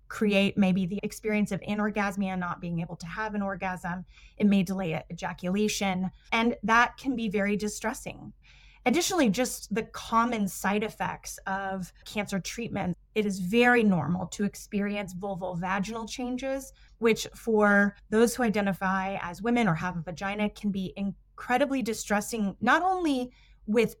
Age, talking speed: 20-39, 145 wpm